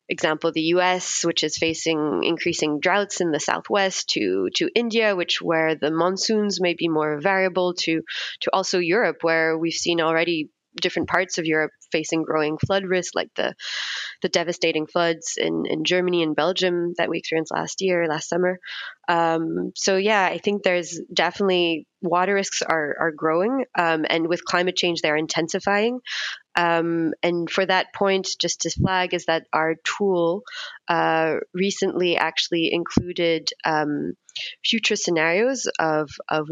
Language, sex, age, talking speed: English, female, 20-39, 155 wpm